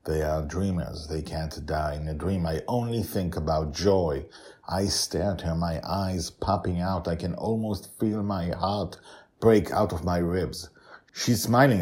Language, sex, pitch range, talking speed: English, male, 80-115 Hz, 180 wpm